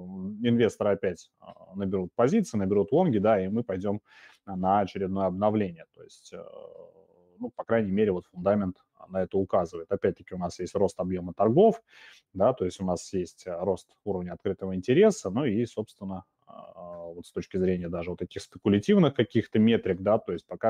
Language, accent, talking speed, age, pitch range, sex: Russian, native, 170 wpm, 30-49, 95-115 Hz, male